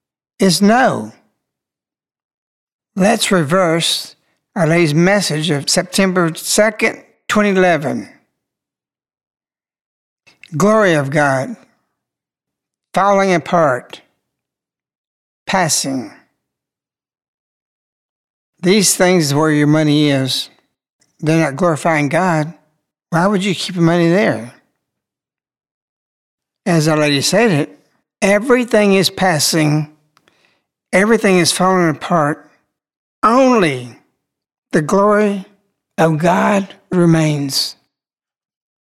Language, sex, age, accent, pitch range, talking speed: English, male, 60-79, American, 160-210 Hz, 80 wpm